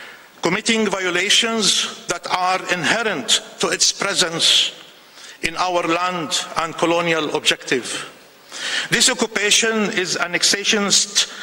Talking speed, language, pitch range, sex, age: 95 wpm, English, 180-225 Hz, male, 50-69